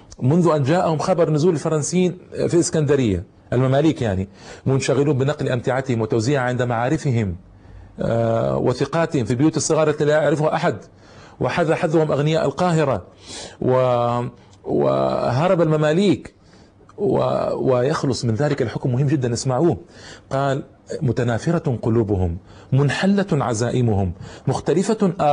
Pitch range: 115-160 Hz